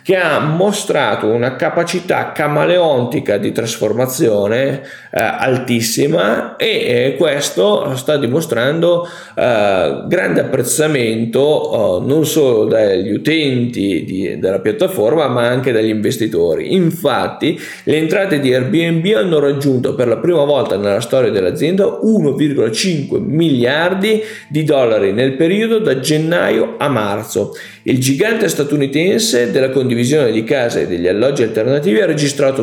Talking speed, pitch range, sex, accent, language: 120 wpm, 130-185 Hz, male, native, Italian